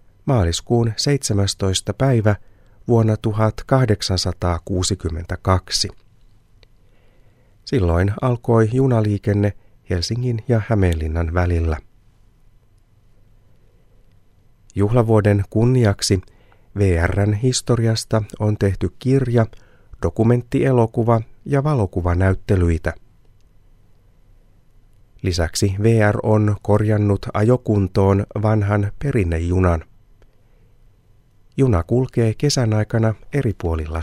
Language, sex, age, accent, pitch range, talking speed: Finnish, male, 30-49, native, 95-115 Hz, 60 wpm